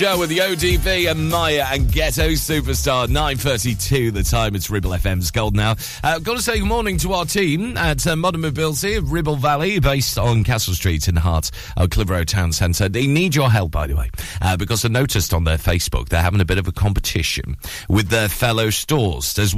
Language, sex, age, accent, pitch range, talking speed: English, male, 40-59, British, 90-140 Hz, 215 wpm